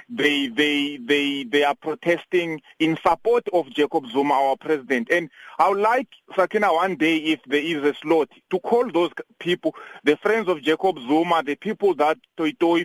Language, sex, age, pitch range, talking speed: English, male, 40-59, 145-190 Hz, 175 wpm